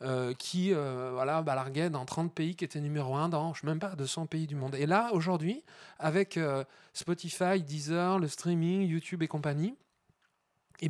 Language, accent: French, French